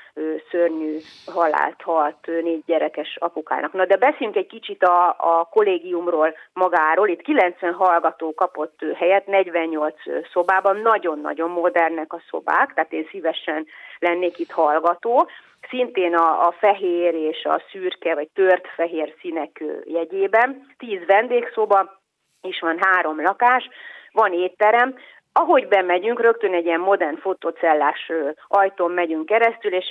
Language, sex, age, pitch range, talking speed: Hungarian, female, 30-49, 165-195 Hz, 125 wpm